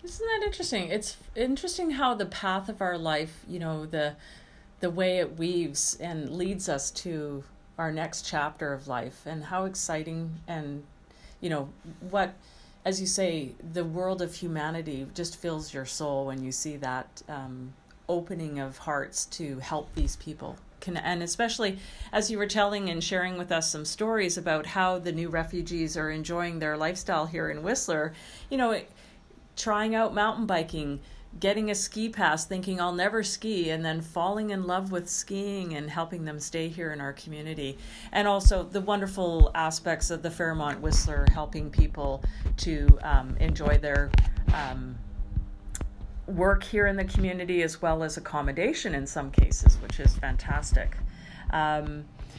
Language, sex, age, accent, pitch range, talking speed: English, female, 40-59, American, 150-185 Hz, 165 wpm